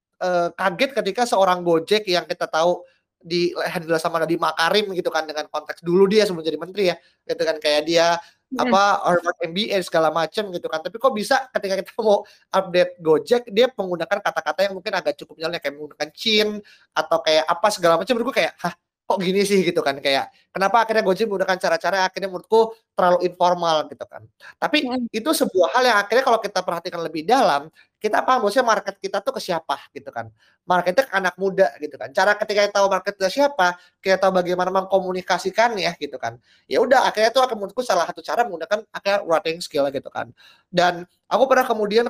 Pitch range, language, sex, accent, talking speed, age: 160-210 Hz, Indonesian, male, native, 190 wpm, 20-39